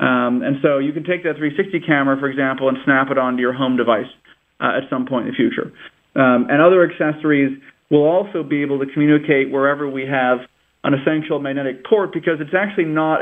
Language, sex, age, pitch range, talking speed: English, male, 40-59, 135-165 Hz, 210 wpm